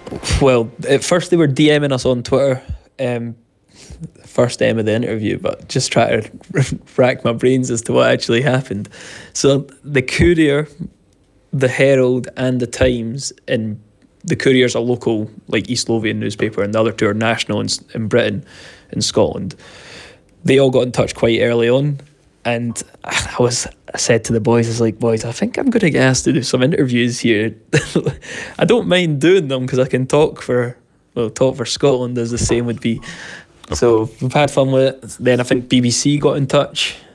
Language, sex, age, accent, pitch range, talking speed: Danish, male, 20-39, British, 115-130 Hz, 195 wpm